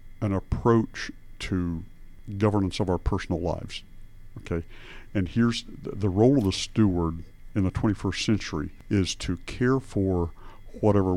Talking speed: 140 wpm